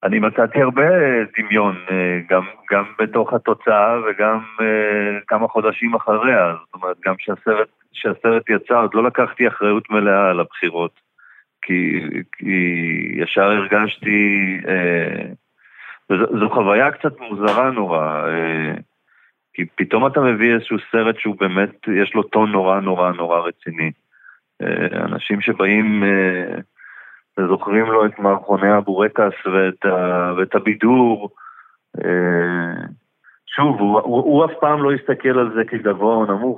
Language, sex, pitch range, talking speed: Hebrew, male, 95-110 Hz, 125 wpm